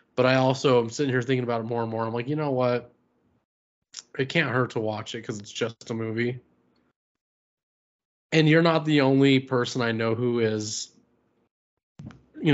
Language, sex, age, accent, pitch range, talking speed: English, male, 20-39, American, 115-140 Hz, 185 wpm